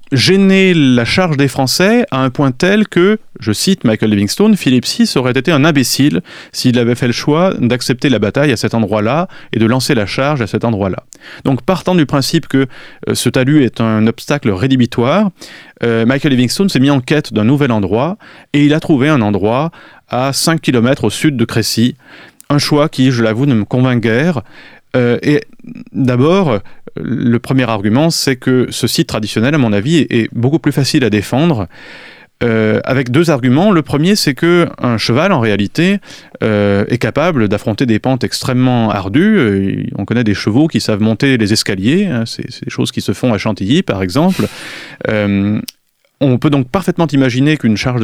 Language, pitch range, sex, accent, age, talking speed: French, 115-155 Hz, male, French, 30-49, 190 wpm